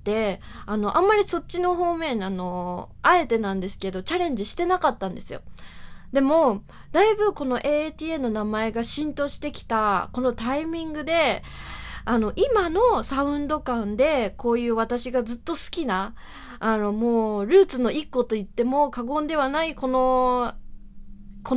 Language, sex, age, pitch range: Japanese, female, 20-39, 215-300 Hz